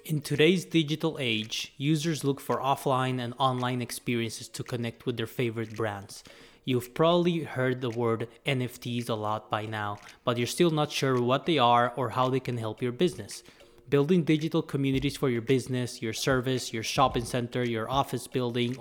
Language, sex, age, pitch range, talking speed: English, male, 20-39, 120-135 Hz, 180 wpm